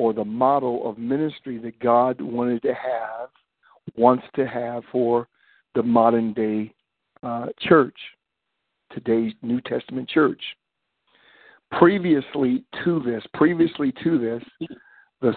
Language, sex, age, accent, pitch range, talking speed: English, male, 50-69, American, 115-130 Hz, 115 wpm